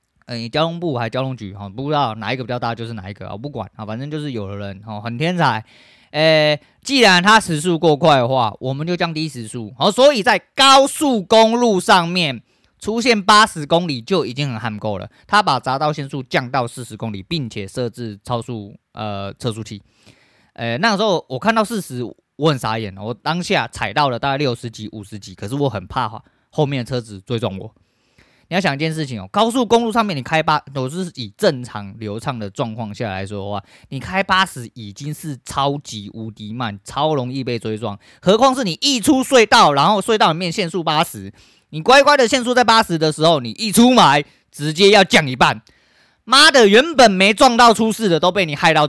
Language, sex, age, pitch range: Chinese, male, 20-39, 115-190 Hz